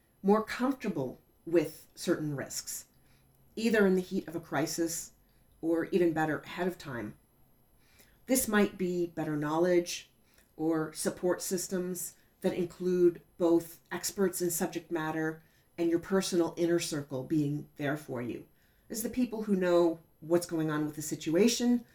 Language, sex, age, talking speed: English, female, 40-59, 145 wpm